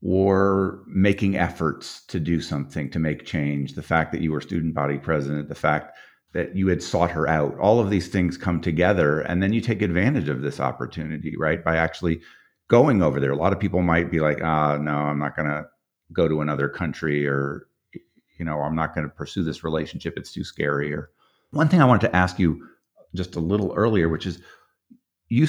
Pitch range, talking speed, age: 75-90 Hz, 210 wpm, 50-69